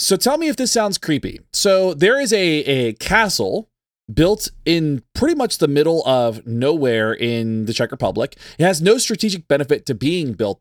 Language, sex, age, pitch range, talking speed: English, male, 30-49, 130-165 Hz, 185 wpm